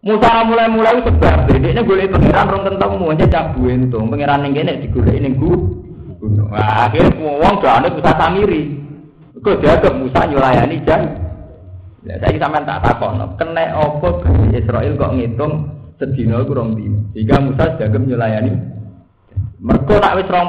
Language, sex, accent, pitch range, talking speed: Indonesian, male, native, 100-155 Hz, 105 wpm